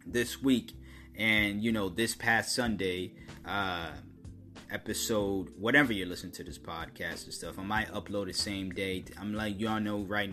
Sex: male